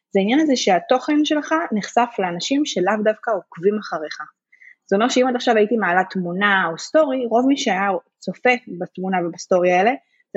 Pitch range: 190-265 Hz